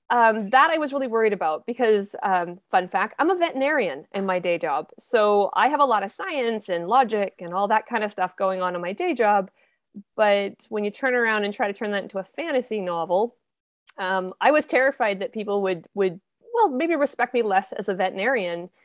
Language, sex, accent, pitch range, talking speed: English, female, American, 200-270 Hz, 220 wpm